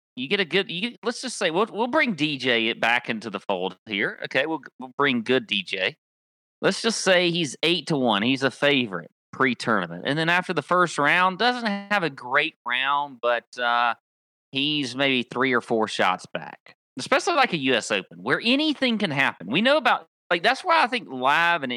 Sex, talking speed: male, 205 wpm